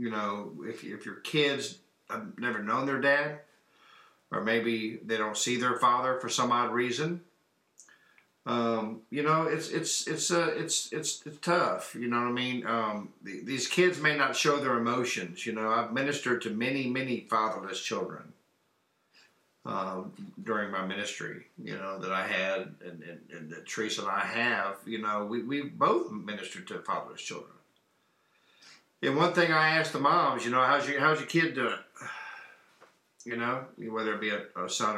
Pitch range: 110-145 Hz